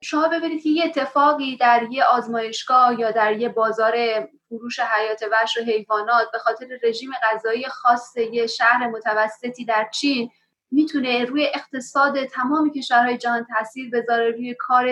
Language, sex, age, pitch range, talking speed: Persian, female, 30-49, 230-275 Hz, 155 wpm